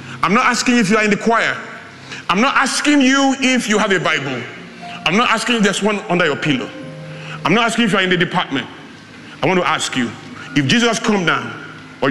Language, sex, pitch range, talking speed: English, male, 135-210 Hz, 230 wpm